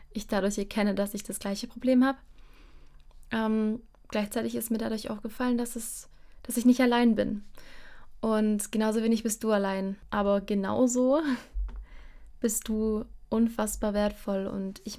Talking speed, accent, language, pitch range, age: 150 wpm, German, German, 195-225 Hz, 20-39